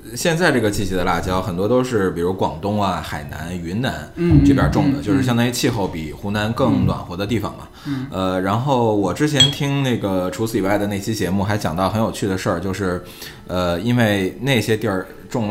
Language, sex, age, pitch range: Chinese, male, 20-39, 90-125 Hz